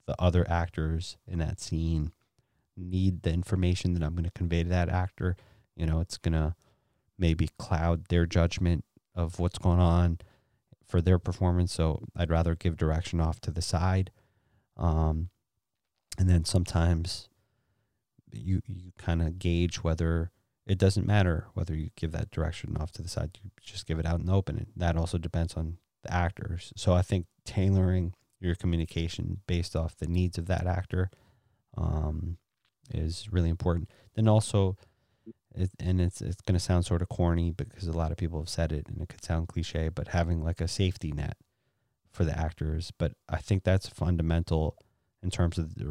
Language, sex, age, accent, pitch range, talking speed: English, male, 30-49, American, 85-100 Hz, 180 wpm